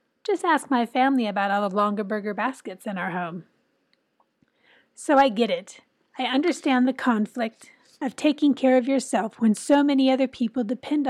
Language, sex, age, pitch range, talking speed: English, female, 30-49, 215-265 Hz, 175 wpm